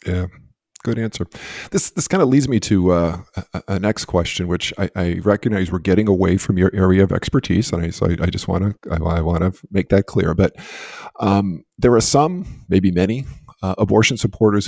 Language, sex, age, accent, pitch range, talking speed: English, male, 50-69, American, 95-115 Hz, 215 wpm